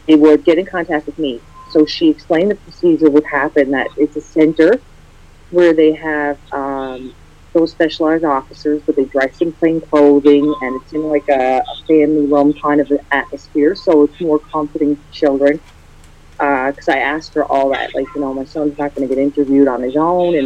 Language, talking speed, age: English, 205 wpm, 30-49